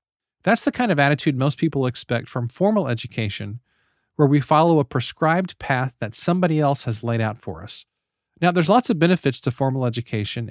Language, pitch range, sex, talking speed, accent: English, 115-155 Hz, male, 190 wpm, American